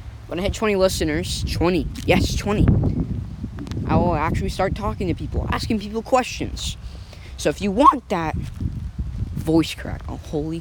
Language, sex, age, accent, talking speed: English, female, 10-29, American, 155 wpm